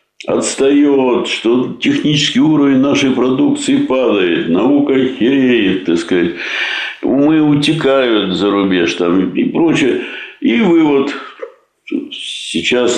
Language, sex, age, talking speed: Russian, male, 60-79, 95 wpm